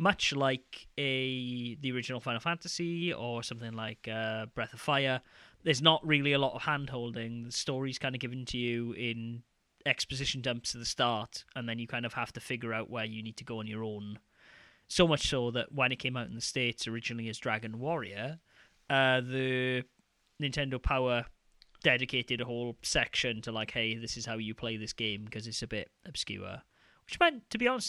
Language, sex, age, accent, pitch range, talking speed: English, male, 20-39, British, 115-140 Hz, 200 wpm